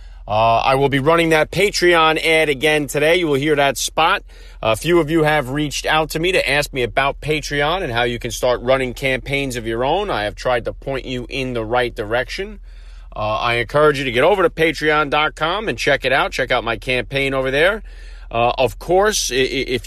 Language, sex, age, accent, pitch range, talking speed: English, male, 40-59, American, 115-150 Hz, 215 wpm